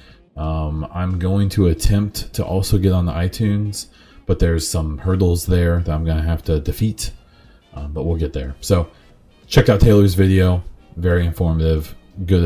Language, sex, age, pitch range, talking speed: English, male, 20-39, 80-100 Hz, 175 wpm